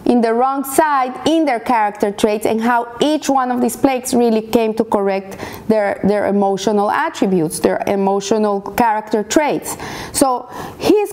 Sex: female